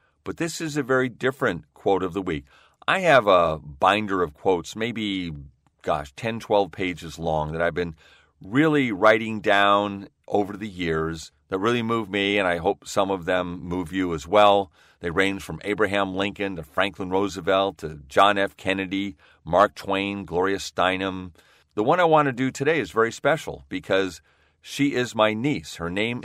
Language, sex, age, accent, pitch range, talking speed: English, male, 40-59, American, 90-115 Hz, 180 wpm